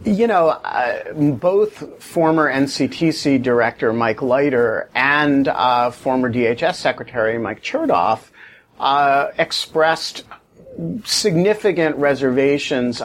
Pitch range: 120-150 Hz